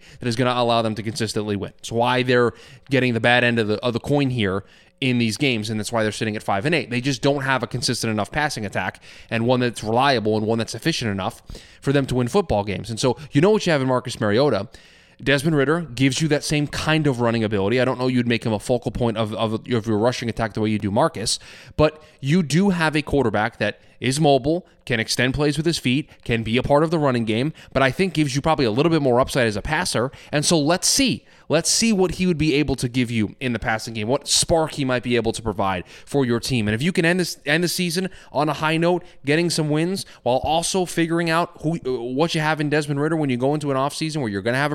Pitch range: 115-150 Hz